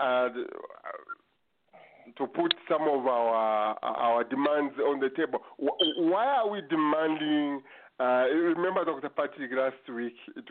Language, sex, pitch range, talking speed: English, male, 120-195 Hz, 135 wpm